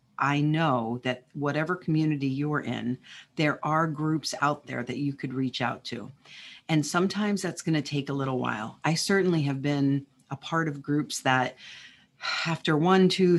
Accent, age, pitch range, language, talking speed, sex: American, 40-59, 140-170 Hz, English, 175 wpm, female